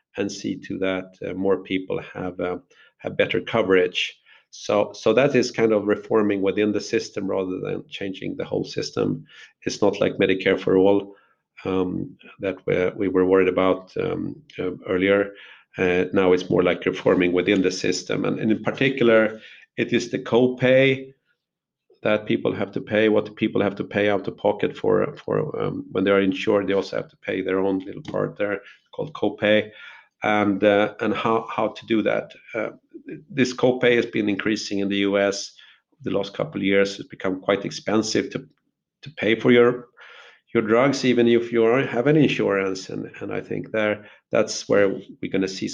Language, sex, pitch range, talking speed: English, male, 95-115 Hz, 190 wpm